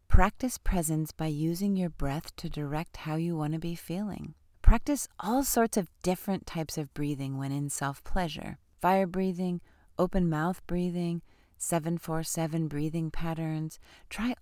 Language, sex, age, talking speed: English, female, 40-59, 140 wpm